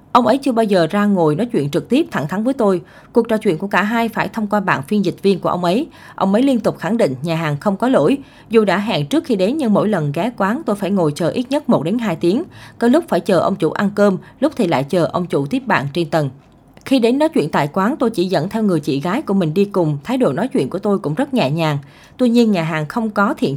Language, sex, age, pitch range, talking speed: Vietnamese, female, 20-39, 165-225 Hz, 290 wpm